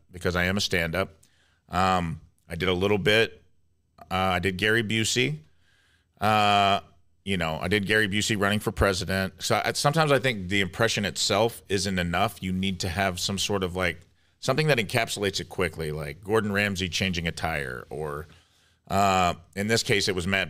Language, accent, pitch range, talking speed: English, American, 85-105 Hz, 185 wpm